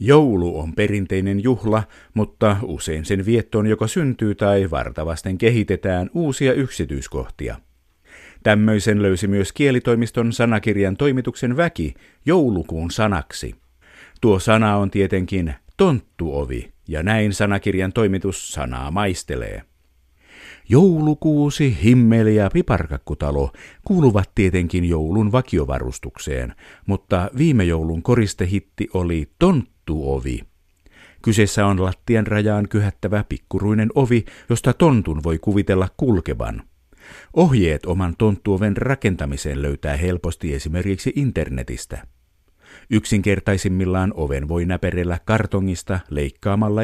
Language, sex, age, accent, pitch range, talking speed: Finnish, male, 50-69, native, 80-110 Hz, 95 wpm